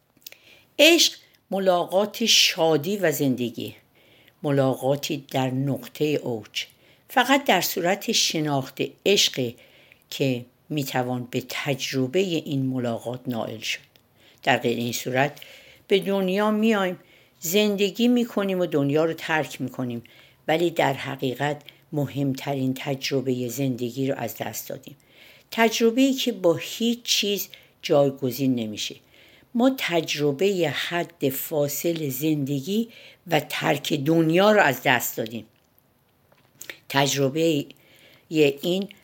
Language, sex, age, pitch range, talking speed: Persian, female, 60-79, 135-195 Hz, 100 wpm